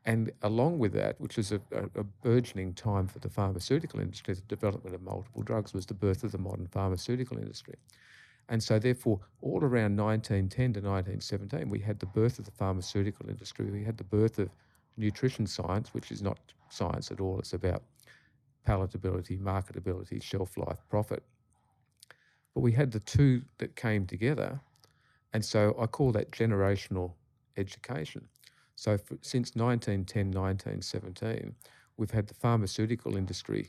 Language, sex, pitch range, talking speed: English, male, 95-120 Hz, 155 wpm